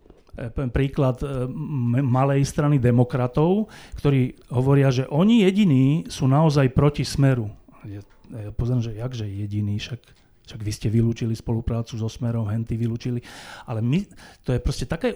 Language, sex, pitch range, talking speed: Slovak, male, 120-155 Hz, 145 wpm